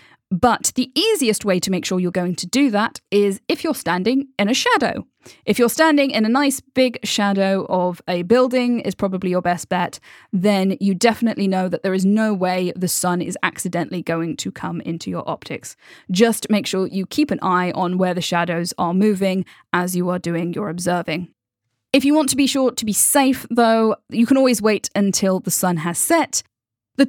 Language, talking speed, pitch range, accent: English, 205 wpm, 180-235 Hz, British